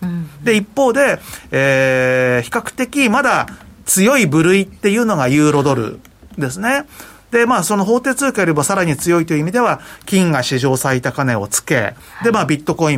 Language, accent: Japanese, native